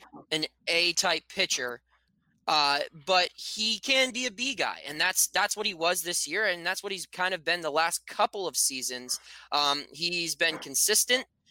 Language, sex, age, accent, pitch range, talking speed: English, male, 20-39, American, 155-205 Hz, 190 wpm